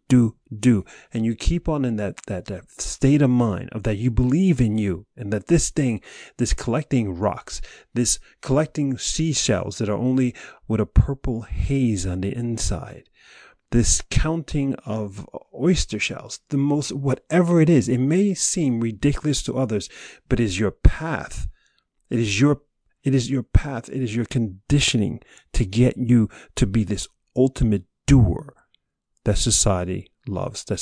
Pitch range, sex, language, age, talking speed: 100-130 Hz, male, English, 40-59, 160 wpm